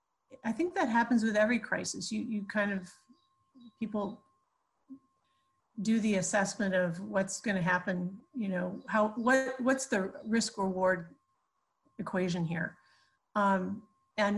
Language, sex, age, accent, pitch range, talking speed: English, female, 40-59, American, 185-220 Hz, 135 wpm